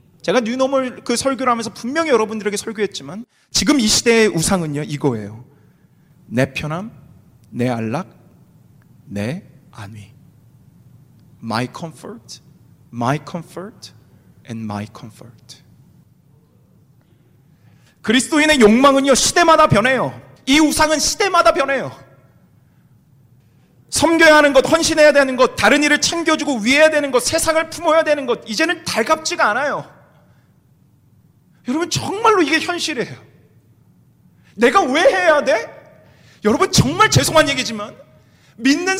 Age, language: 40-59, Korean